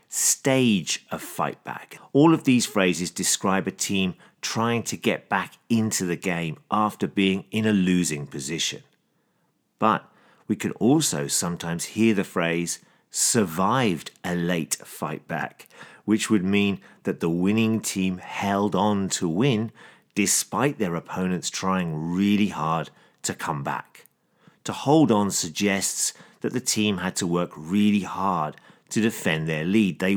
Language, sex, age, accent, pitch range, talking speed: English, male, 40-59, British, 90-110 Hz, 145 wpm